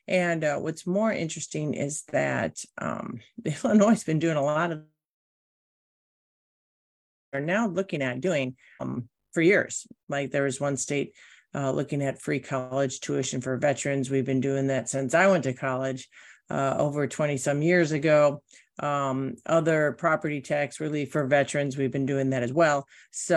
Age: 50-69